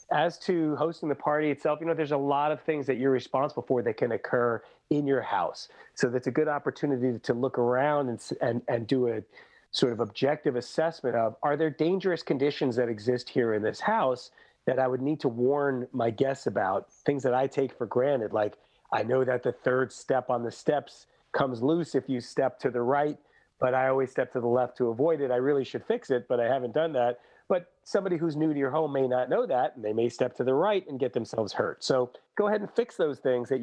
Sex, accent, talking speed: male, American, 240 wpm